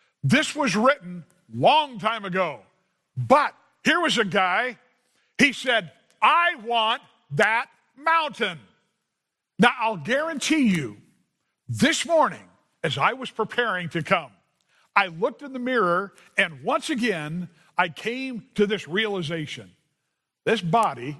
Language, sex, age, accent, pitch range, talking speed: English, male, 50-69, American, 155-230 Hz, 125 wpm